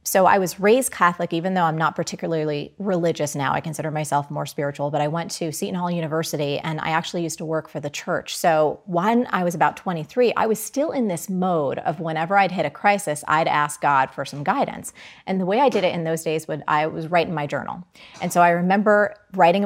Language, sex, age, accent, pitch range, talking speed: English, female, 30-49, American, 165-205 Hz, 230 wpm